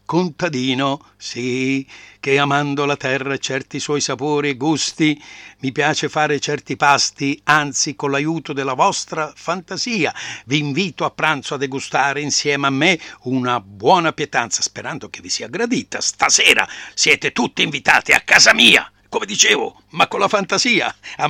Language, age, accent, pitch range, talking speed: Italian, 60-79, native, 110-150 Hz, 150 wpm